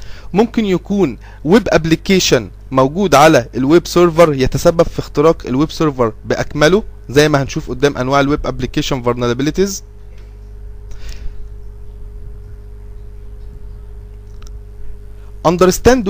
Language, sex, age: Arabic, male, 20-39